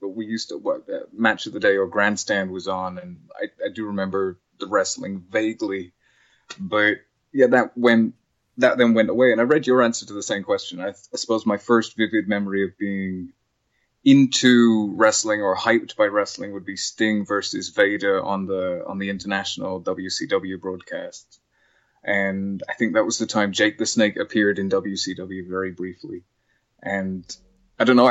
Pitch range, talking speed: 100-115 Hz, 185 wpm